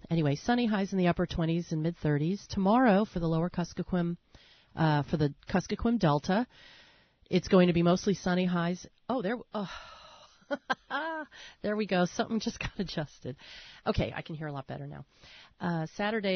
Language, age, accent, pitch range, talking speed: English, 40-59, American, 165-215 Hz, 170 wpm